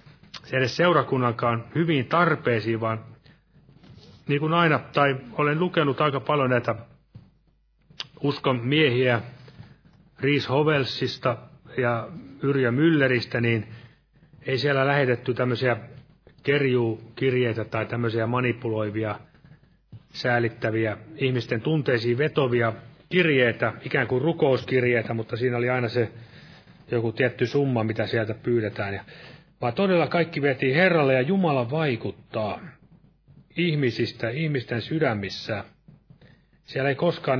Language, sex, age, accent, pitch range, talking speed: Finnish, male, 30-49, native, 115-145 Hz, 105 wpm